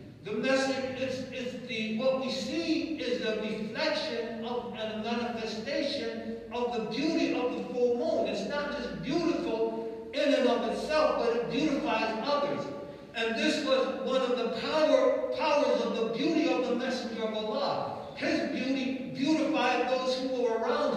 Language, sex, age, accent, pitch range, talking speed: English, male, 60-79, American, 230-285 Hz, 160 wpm